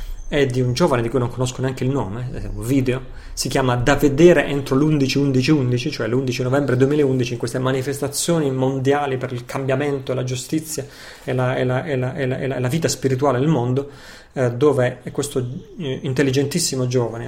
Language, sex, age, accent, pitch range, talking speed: Italian, male, 30-49, native, 125-145 Hz, 185 wpm